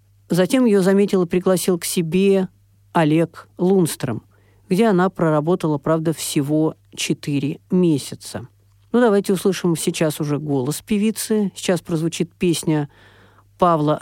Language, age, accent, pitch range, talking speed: Russian, 50-69, native, 130-180 Hz, 115 wpm